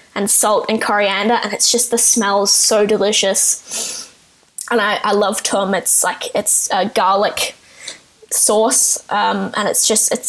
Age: 10-29